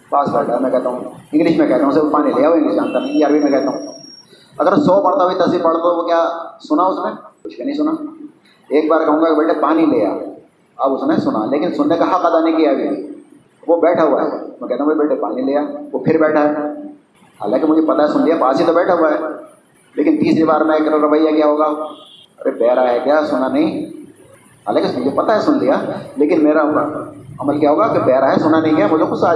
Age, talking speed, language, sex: 30-49, 145 wpm, Urdu, male